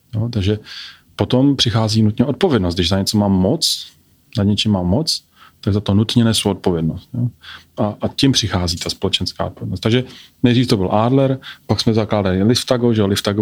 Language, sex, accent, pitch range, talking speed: Czech, male, native, 100-115 Hz, 175 wpm